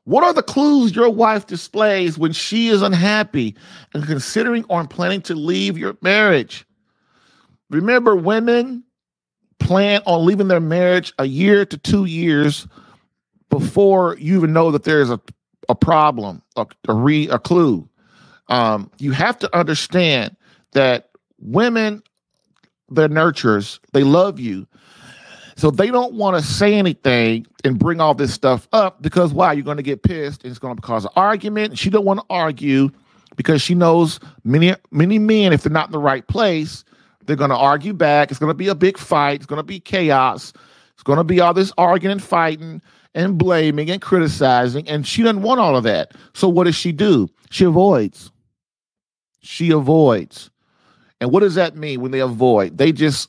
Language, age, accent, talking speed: English, 40-59, American, 180 wpm